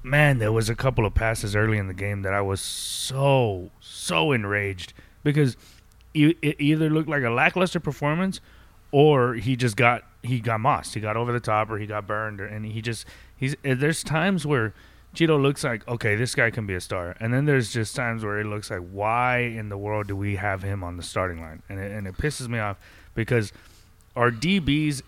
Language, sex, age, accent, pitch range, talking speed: English, male, 30-49, American, 100-125 Hz, 215 wpm